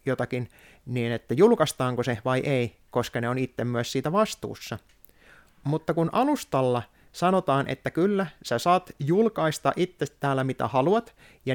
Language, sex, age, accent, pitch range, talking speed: Finnish, male, 30-49, native, 125-160 Hz, 140 wpm